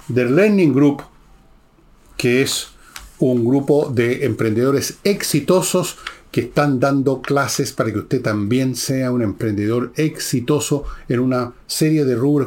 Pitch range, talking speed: 115-145 Hz, 130 wpm